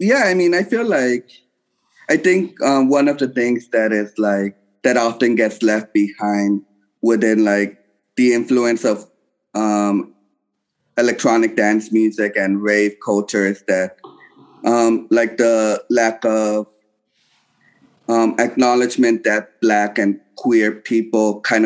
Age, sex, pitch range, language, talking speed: 30-49, male, 105-130 Hz, English, 135 wpm